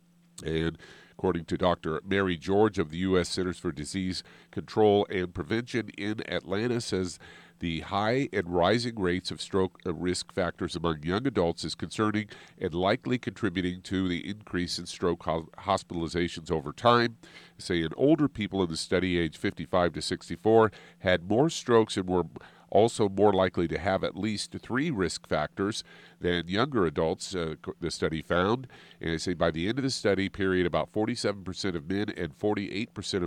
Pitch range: 85-105 Hz